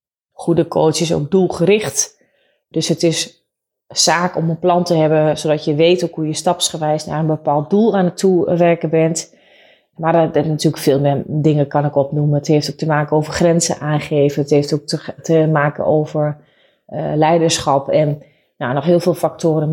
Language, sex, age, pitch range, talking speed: Dutch, female, 30-49, 155-175 Hz, 190 wpm